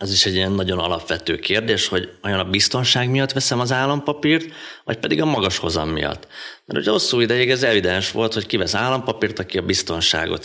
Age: 30-49